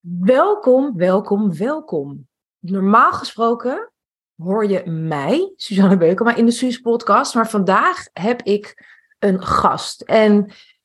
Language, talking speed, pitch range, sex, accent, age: Dutch, 115 wpm, 195-265 Hz, female, Dutch, 30-49